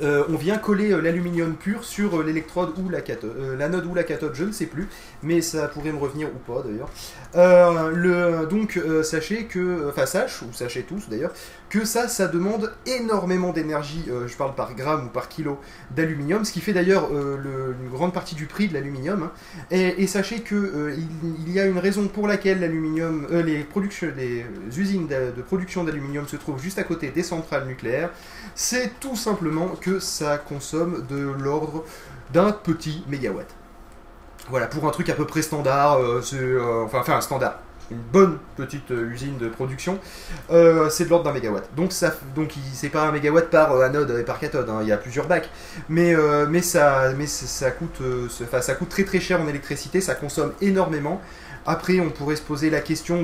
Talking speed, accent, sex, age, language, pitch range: 205 wpm, French, male, 20-39, French, 140-180 Hz